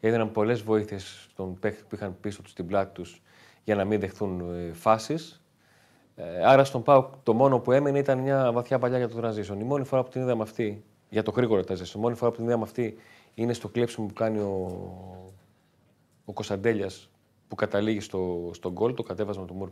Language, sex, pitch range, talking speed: Greek, male, 100-125 Hz, 200 wpm